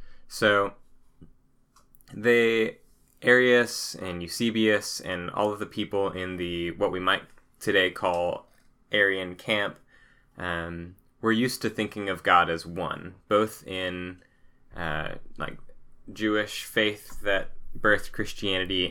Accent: American